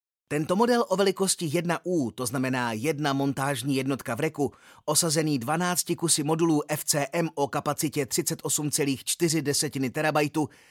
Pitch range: 135-180 Hz